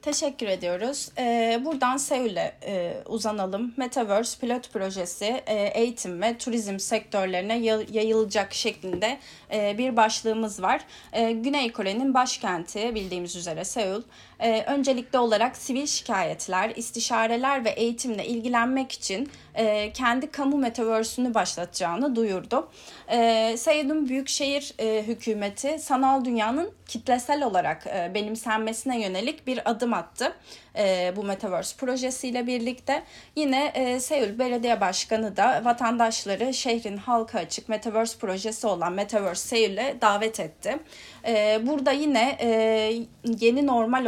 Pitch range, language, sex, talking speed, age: 210-255 Hz, Turkish, female, 120 wpm, 30-49